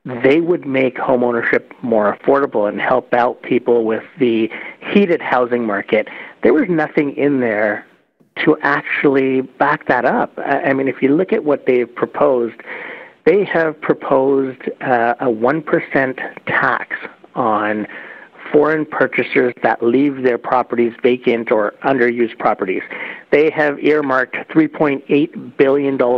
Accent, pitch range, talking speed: American, 120-150 Hz, 135 wpm